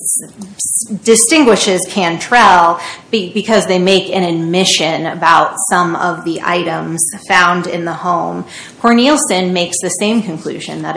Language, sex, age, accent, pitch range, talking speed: English, female, 30-49, American, 165-200 Hz, 120 wpm